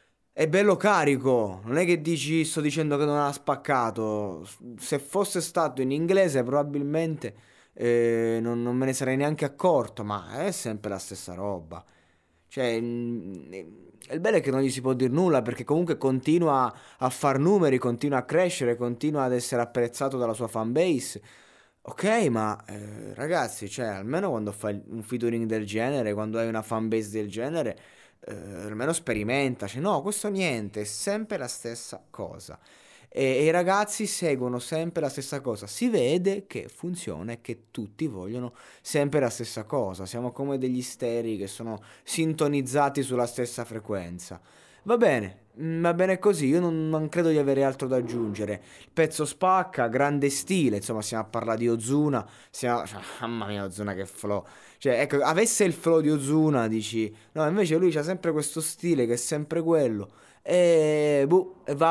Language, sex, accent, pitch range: Italian, male, native, 115-155 Hz